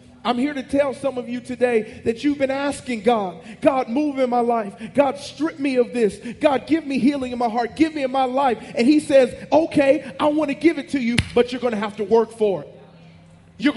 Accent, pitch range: American, 170-265 Hz